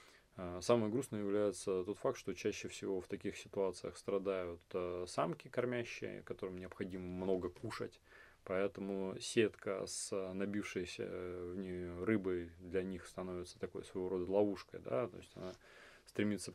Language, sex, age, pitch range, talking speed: Russian, male, 20-39, 90-100 Hz, 135 wpm